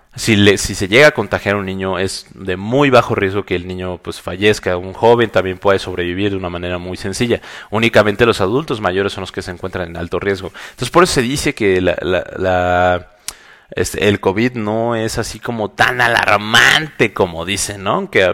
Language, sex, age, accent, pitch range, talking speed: Spanish, male, 30-49, Mexican, 95-120 Hz, 215 wpm